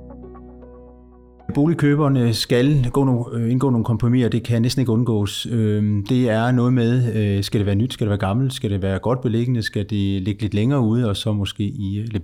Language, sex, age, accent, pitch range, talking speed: Danish, male, 30-49, native, 105-125 Hz, 195 wpm